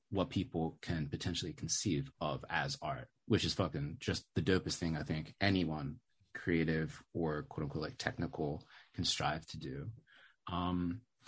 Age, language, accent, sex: 30-49, English, American, male